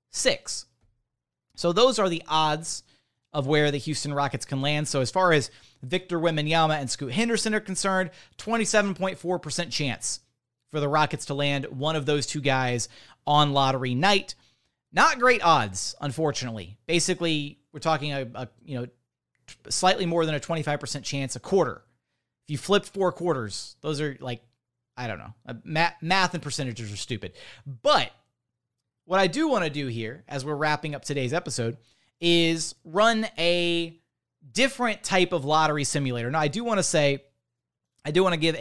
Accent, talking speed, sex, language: American, 175 wpm, male, English